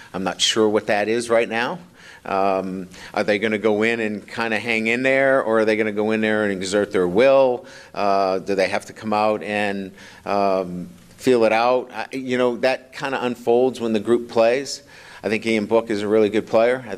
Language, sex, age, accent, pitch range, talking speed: English, male, 50-69, American, 105-125 Hz, 235 wpm